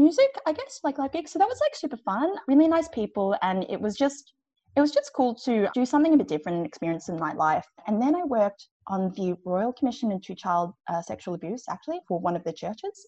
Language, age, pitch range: English, 20-39, 180-285 Hz